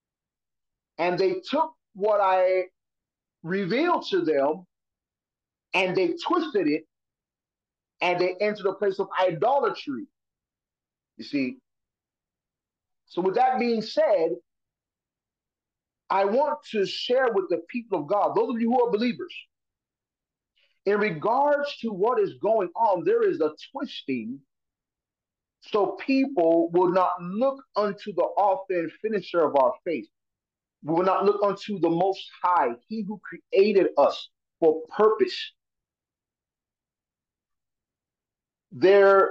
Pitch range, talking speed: 180-265 Hz, 120 wpm